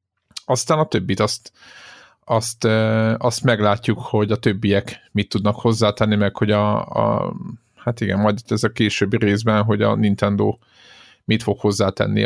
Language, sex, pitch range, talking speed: Hungarian, male, 100-115 Hz, 145 wpm